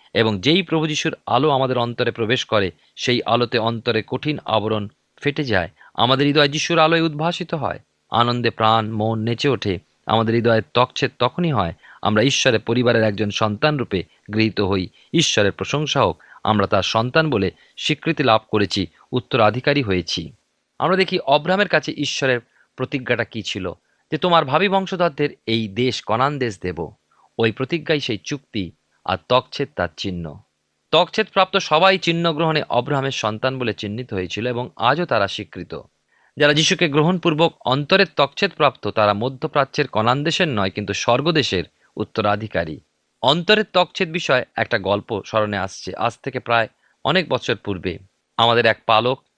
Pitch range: 105-150 Hz